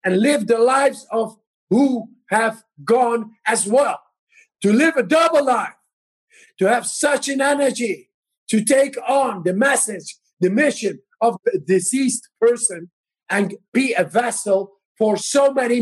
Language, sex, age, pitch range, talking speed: English, male, 50-69, 195-250 Hz, 145 wpm